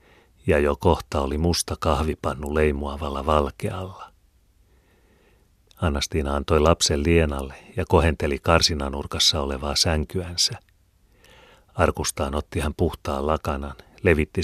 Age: 40-59